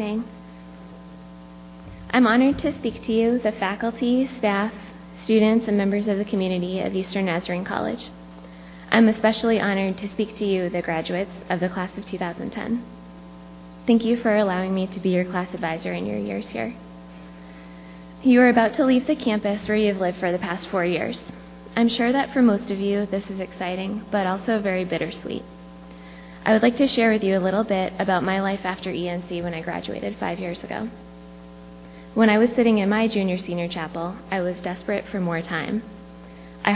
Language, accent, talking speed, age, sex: English, American, 185 wpm, 20-39, female